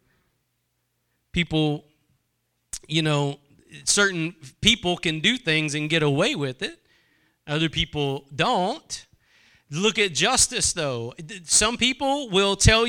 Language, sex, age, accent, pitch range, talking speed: English, male, 40-59, American, 155-200 Hz, 110 wpm